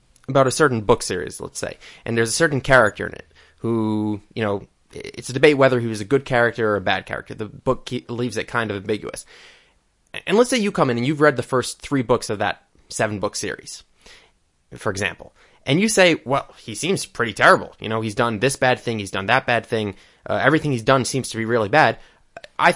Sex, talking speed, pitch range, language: male, 230 wpm, 110-140 Hz, English